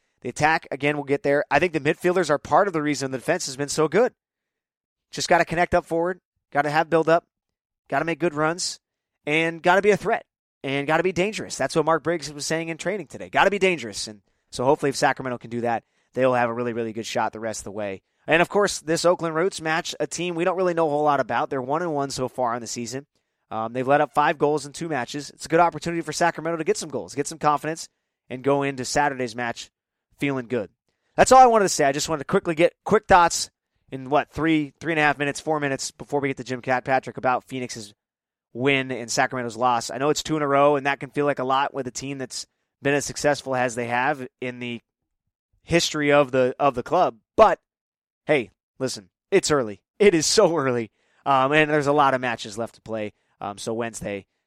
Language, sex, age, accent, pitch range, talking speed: English, male, 20-39, American, 125-160 Hz, 250 wpm